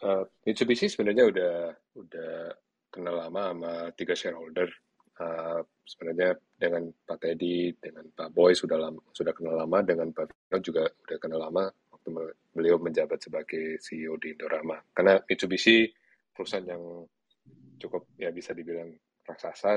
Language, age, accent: Indonesian, 30-49, native